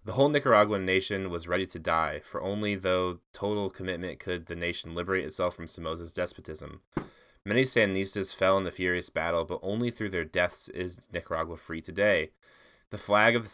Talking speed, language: 180 wpm, English